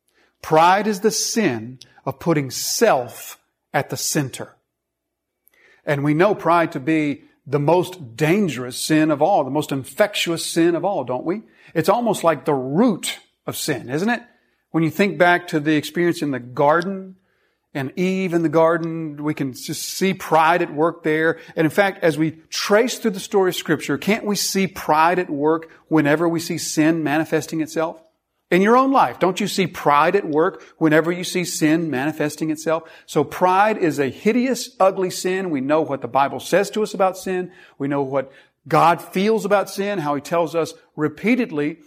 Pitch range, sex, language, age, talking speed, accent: 150-190 Hz, male, English, 40-59, 185 wpm, American